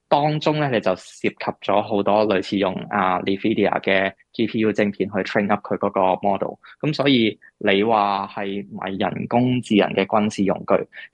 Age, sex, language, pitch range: 20-39, male, Chinese, 95-115 Hz